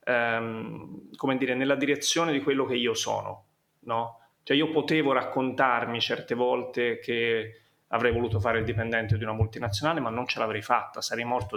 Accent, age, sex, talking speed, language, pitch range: native, 30-49, male, 170 wpm, Italian, 115-140 Hz